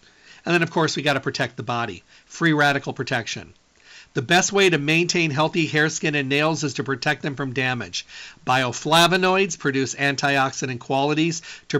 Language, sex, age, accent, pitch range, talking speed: English, male, 50-69, American, 130-160 Hz, 175 wpm